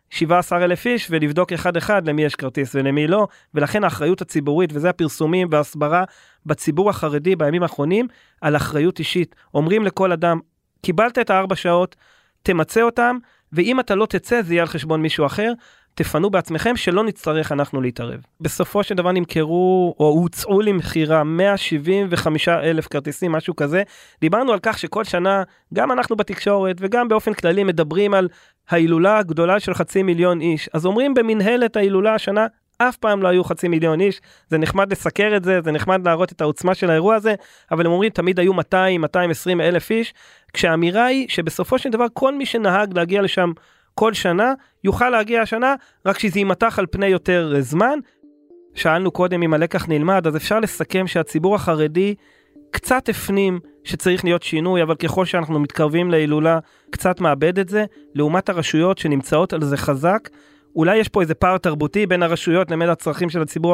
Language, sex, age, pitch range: Hebrew, male, 30-49, 160-200 Hz